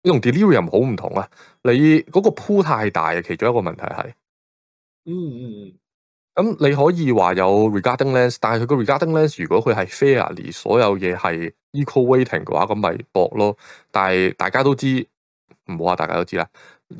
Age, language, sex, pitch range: 20-39, Chinese, male, 95-140 Hz